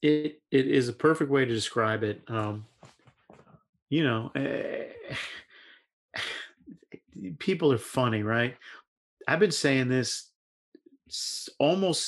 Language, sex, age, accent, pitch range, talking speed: English, male, 40-59, American, 115-145 Hz, 110 wpm